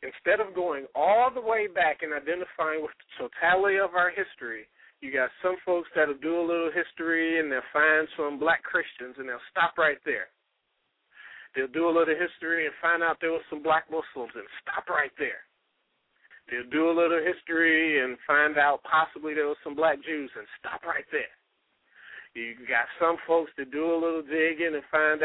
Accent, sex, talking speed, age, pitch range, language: American, male, 195 wpm, 40-59, 155-195 Hz, English